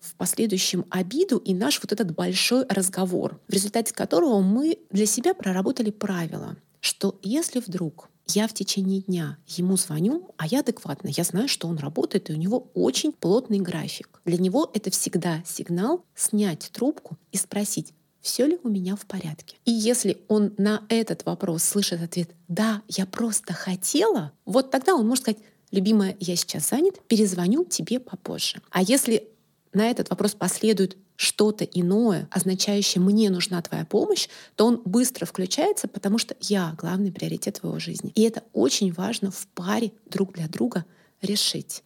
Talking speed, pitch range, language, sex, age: 160 wpm, 180-220 Hz, Russian, female, 30-49